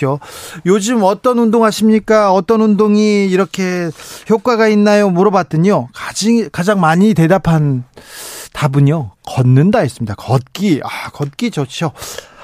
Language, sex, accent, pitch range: Korean, male, native, 130-180 Hz